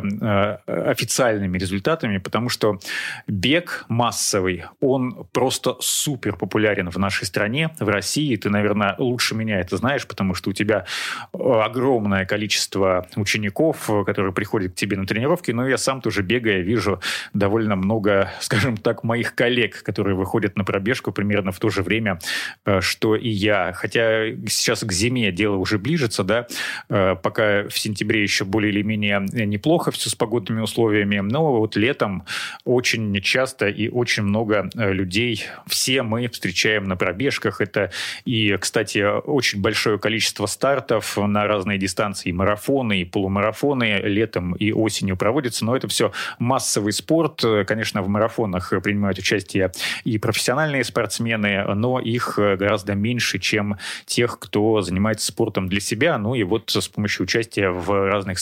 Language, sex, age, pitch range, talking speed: Russian, male, 30-49, 100-115 Hz, 145 wpm